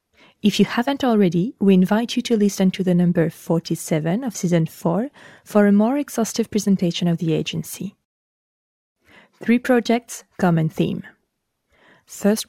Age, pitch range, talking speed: 20-39, 170-220 Hz, 140 wpm